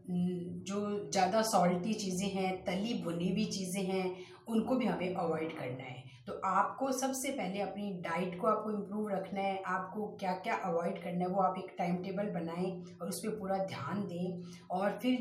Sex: female